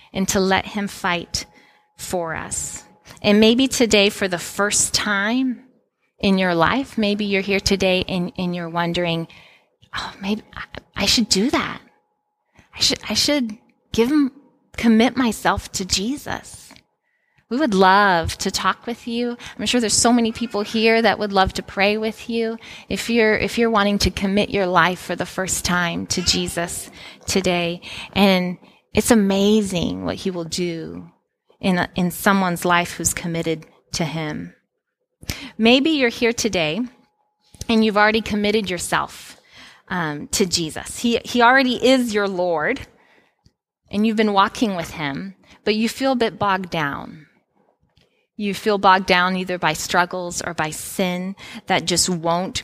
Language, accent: English, American